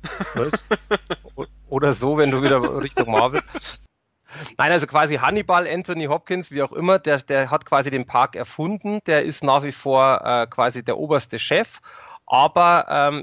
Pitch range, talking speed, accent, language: 130-160 Hz, 160 wpm, German, German